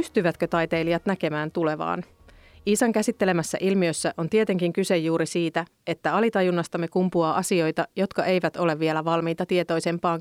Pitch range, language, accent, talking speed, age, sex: 160-185 Hz, Finnish, native, 130 wpm, 30-49, female